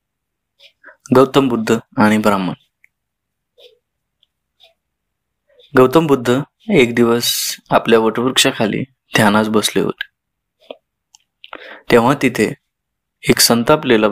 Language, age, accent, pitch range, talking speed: Marathi, 20-39, native, 110-130 Hz, 70 wpm